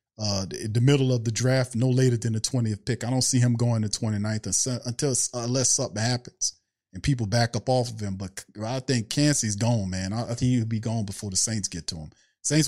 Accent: American